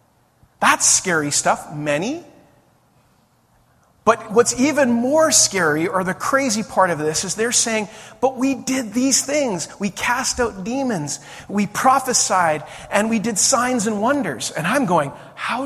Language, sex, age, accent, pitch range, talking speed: English, male, 40-59, American, 150-250 Hz, 150 wpm